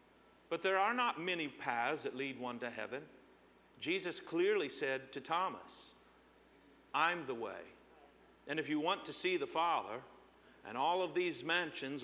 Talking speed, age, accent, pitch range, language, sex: 160 wpm, 50-69, American, 180-275 Hz, English, male